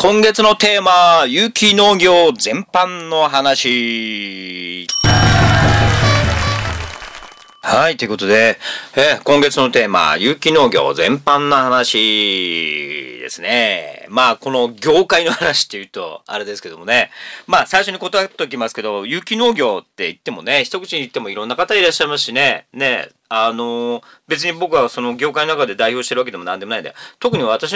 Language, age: Japanese, 40-59